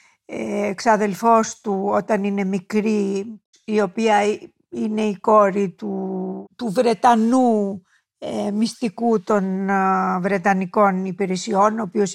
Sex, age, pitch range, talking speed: female, 50-69, 205-265 Hz, 95 wpm